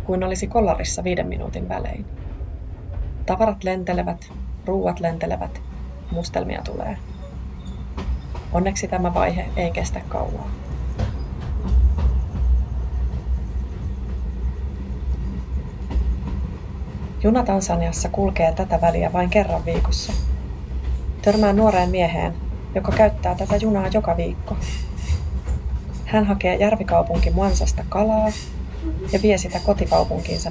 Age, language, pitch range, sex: 30-49, Finnish, 65-95 Hz, female